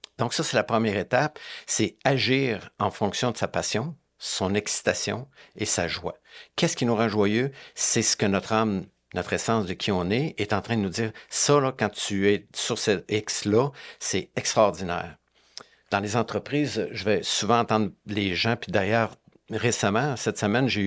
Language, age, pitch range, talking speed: French, 50-69, 95-115 Hz, 185 wpm